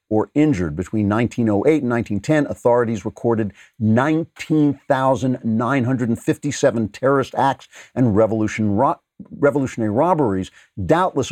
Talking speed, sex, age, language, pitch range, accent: 80 wpm, male, 50-69, English, 105-130 Hz, American